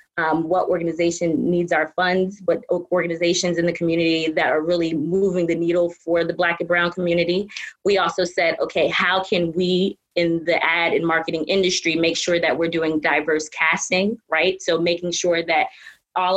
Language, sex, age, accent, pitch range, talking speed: English, female, 20-39, American, 165-190 Hz, 180 wpm